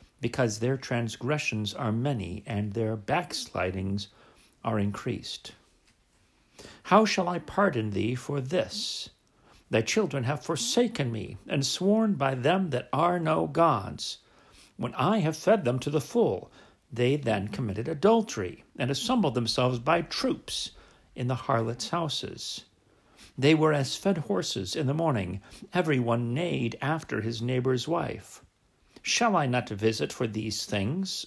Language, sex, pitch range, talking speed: English, male, 115-160 Hz, 140 wpm